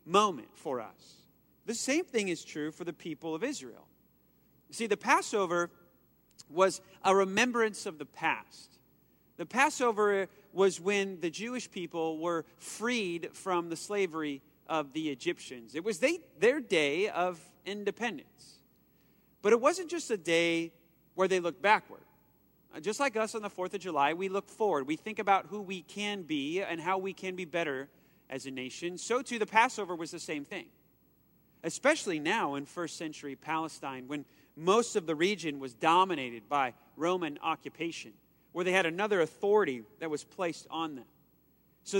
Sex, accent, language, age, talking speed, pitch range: male, American, English, 40-59, 165 wpm, 165-210 Hz